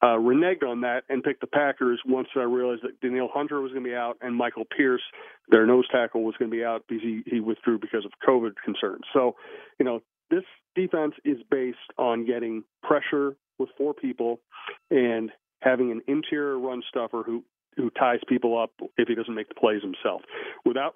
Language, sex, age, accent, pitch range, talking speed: English, male, 40-59, American, 120-155 Hz, 200 wpm